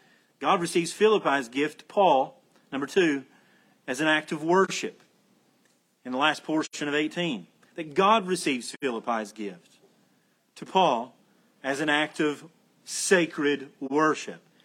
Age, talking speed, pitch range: 40-59, 130 wpm, 140-195 Hz